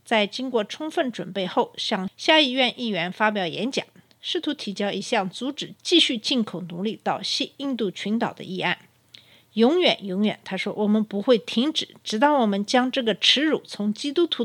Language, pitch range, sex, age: Chinese, 195-260 Hz, female, 50-69